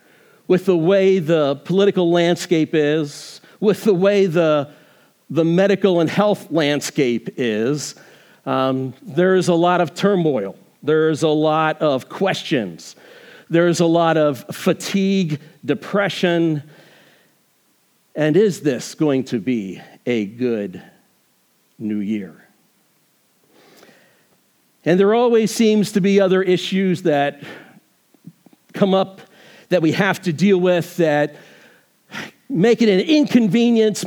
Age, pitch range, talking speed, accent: 50-69, 150-200 Hz, 115 wpm, American